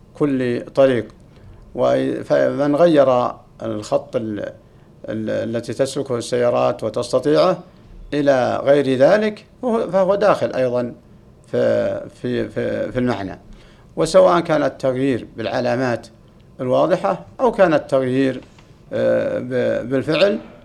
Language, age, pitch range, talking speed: Arabic, 60-79, 115-145 Hz, 95 wpm